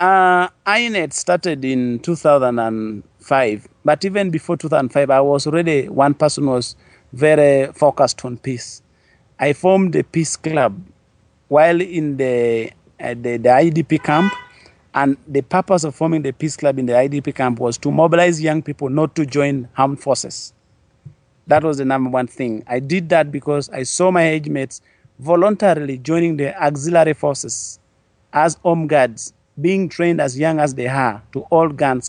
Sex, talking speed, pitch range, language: male, 165 wpm, 130-165 Hz, English